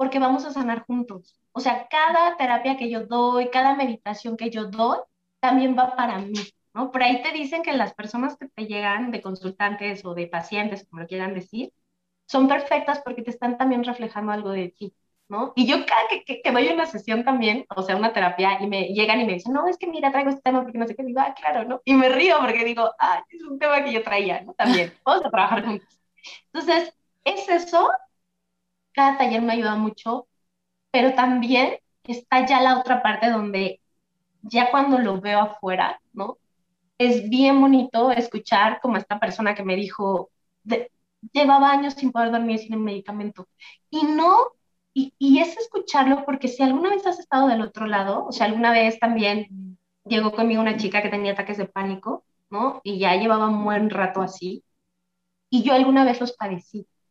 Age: 20-39